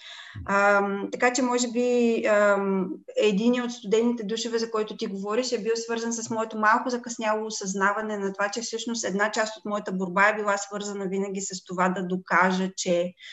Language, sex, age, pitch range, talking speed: Bulgarian, female, 20-39, 180-220 Hz, 175 wpm